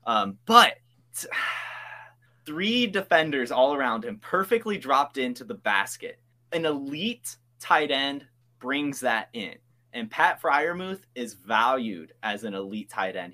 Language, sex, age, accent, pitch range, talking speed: English, male, 20-39, American, 120-175 Hz, 130 wpm